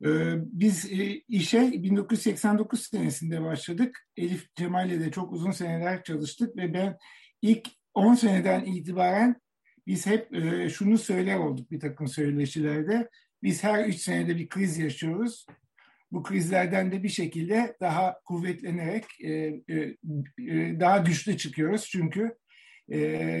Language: Turkish